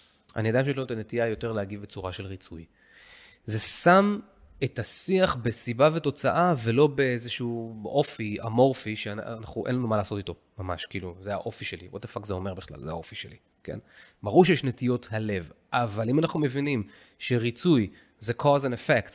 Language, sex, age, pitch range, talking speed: Hebrew, male, 30-49, 105-130 Hz, 170 wpm